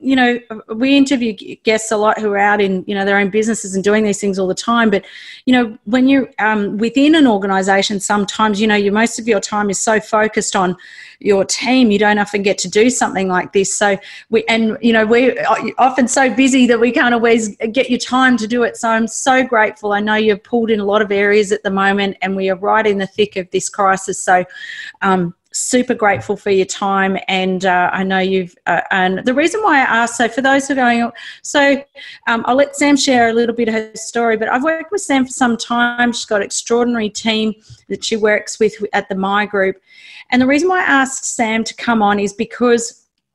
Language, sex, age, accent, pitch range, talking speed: English, female, 30-49, Australian, 200-240 Hz, 235 wpm